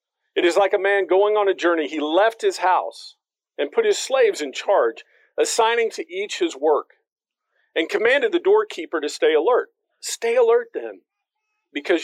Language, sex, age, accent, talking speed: English, male, 50-69, American, 175 wpm